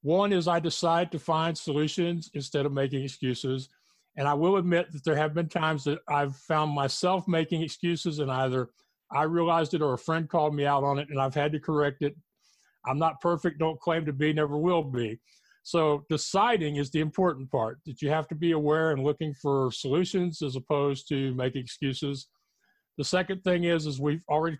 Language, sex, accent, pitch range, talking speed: English, male, American, 145-170 Hz, 200 wpm